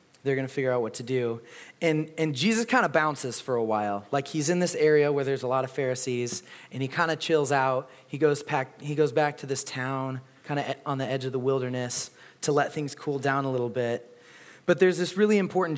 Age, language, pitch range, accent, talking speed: 30-49, English, 125-155 Hz, American, 240 wpm